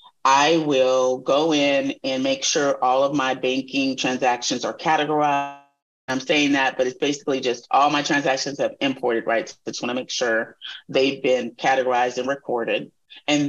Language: English